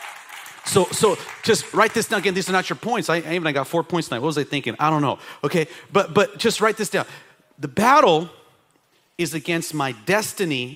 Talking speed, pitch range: 225 wpm, 155-200 Hz